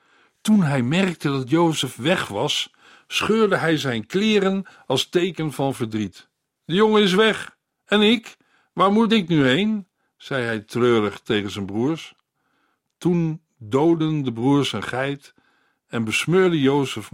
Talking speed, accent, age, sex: 145 wpm, Dutch, 50-69, male